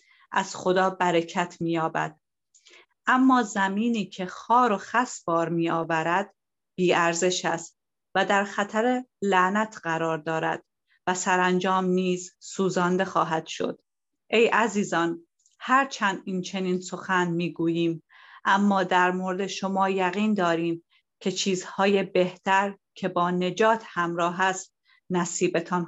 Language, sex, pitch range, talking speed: Persian, female, 175-200 Hz, 110 wpm